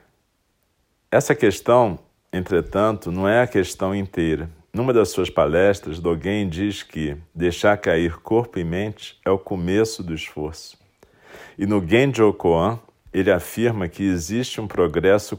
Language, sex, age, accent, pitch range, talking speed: Portuguese, male, 50-69, Brazilian, 85-105 Hz, 135 wpm